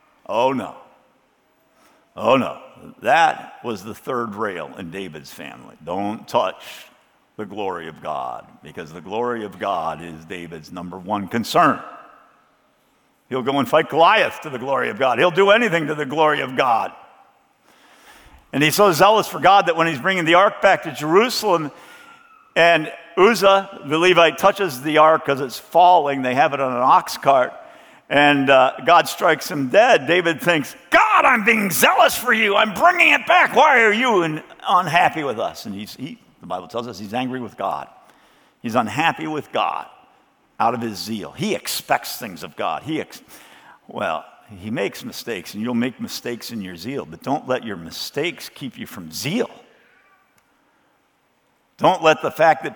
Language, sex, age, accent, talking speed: English, male, 50-69, American, 175 wpm